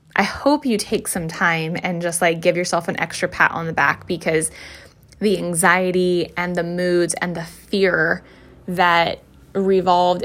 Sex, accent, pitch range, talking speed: female, American, 165-185 Hz, 165 wpm